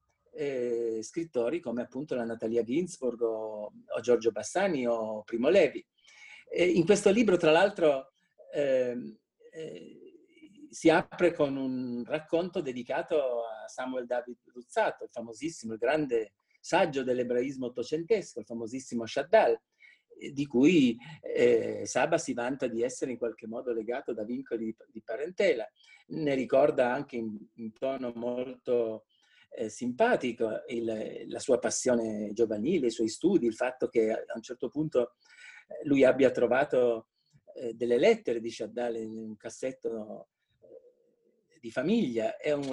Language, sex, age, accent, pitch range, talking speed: Italian, male, 40-59, native, 120-195 Hz, 135 wpm